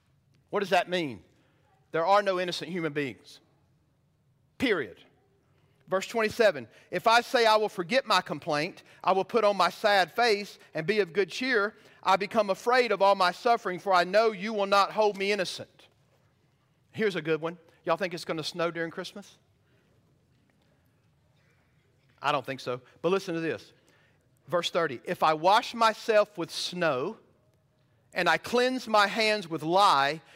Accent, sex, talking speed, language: American, male, 165 wpm, English